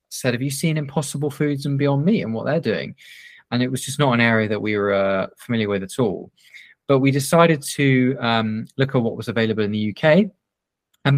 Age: 20-39